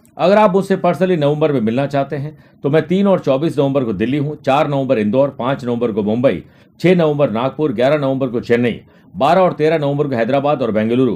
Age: 50-69